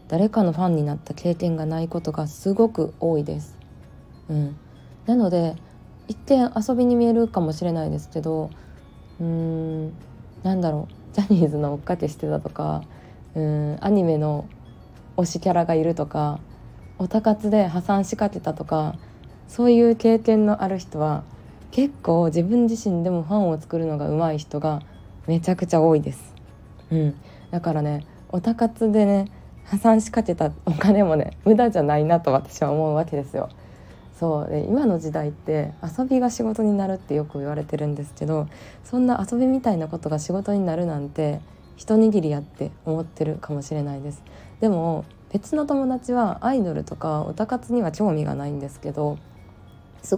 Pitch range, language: 150-200 Hz, Japanese